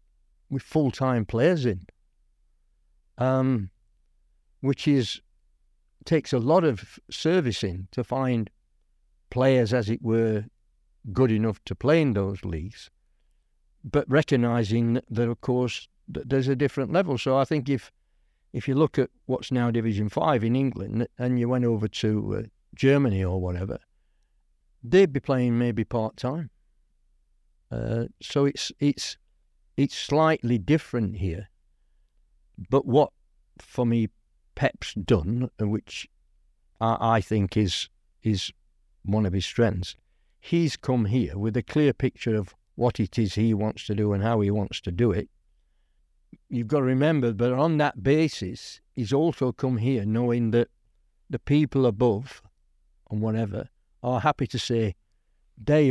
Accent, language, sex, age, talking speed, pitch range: British, English, male, 60-79, 145 wpm, 95-130 Hz